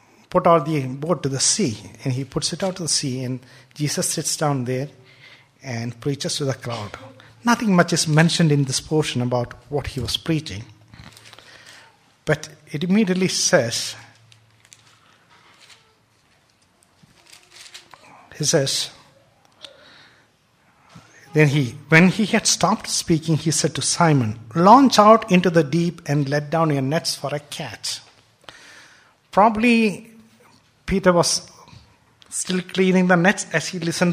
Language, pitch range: English, 130-170 Hz